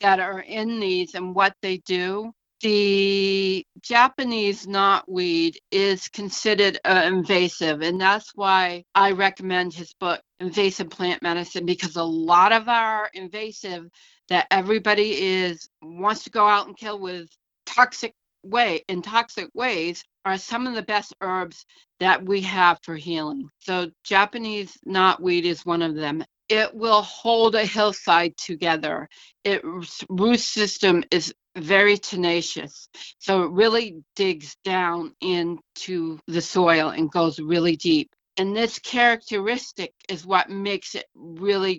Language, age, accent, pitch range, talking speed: English, 50-69, American, 170-205 Hz, 140 wpm